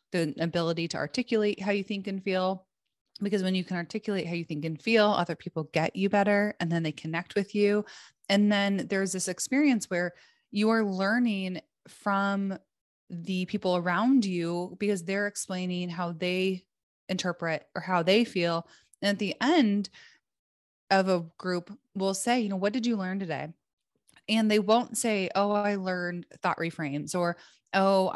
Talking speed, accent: 175 wpm, American